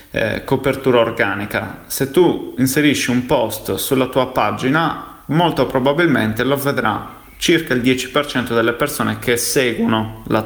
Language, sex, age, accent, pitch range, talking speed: Italian, male, 30-49, native, 115-135 Hz, 130 wpm